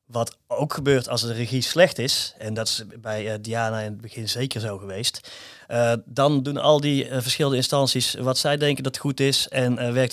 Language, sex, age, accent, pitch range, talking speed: Dutch, male, 30-49, Dutch, 115-140 Hz, 220 wpm